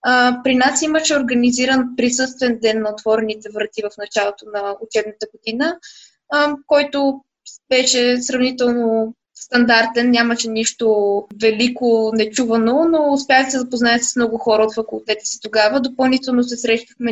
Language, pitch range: Bulgarian, 220-245 Hz